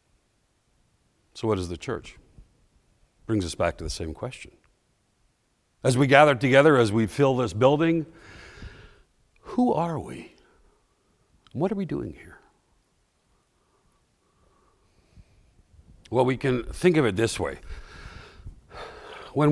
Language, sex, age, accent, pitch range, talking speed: English, male, 60-79, American, 90-130 Hz, 115 wpm